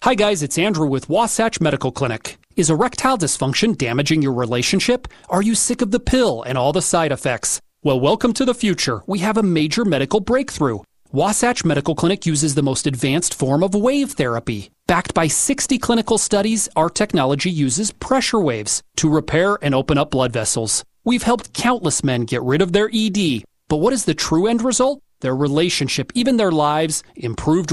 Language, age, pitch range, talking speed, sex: English, 30-49, 140-220 Hz, 185 wpm, male